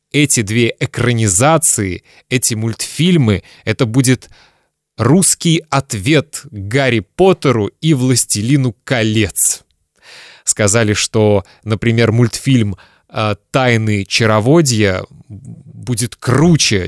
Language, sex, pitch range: Russian, male, 110-150 Hz